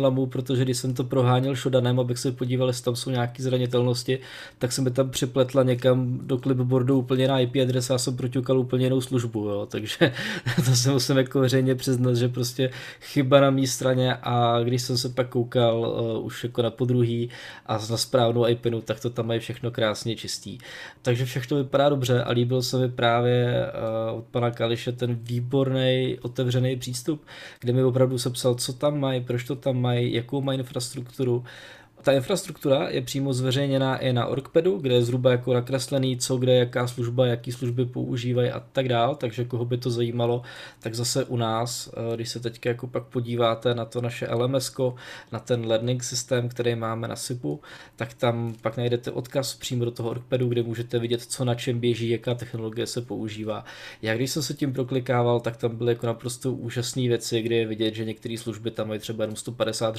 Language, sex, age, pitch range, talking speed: Czech, male, 20-39, 120-130 Hz, 195 wpm